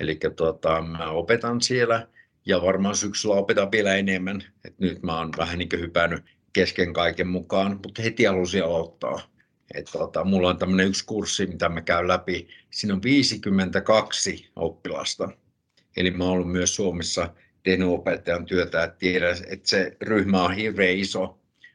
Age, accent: 60-79, native